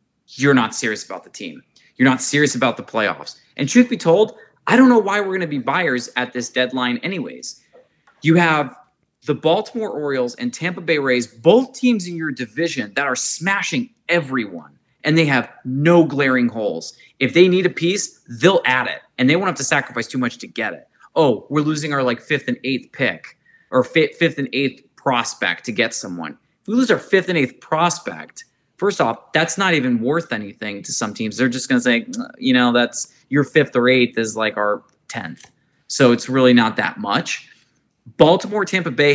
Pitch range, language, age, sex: 125-190 Hz, English, 20-39, male